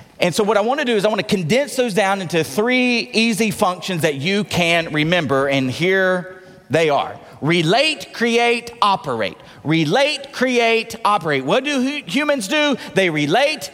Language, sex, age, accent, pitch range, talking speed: English, male, 40-59, American, 190-250 Hz, 155 wpm